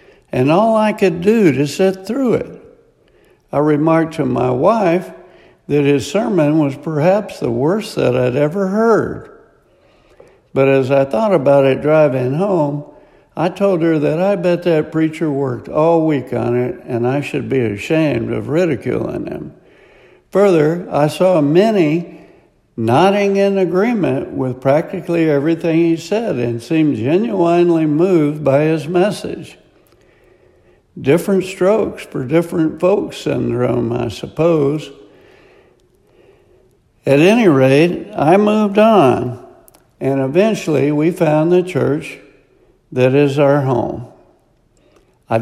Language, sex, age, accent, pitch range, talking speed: English, male, 60-79, American, 140-180 Hz, 130 wpm